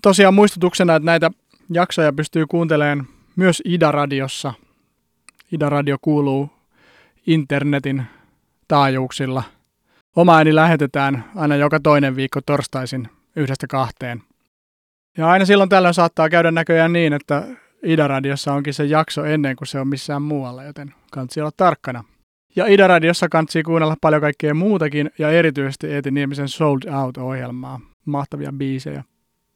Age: 30-49